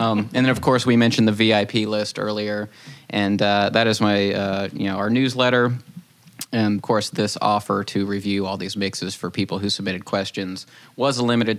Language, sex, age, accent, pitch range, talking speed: English, male, 20-39, American, 100-115 Hz, 200 wpm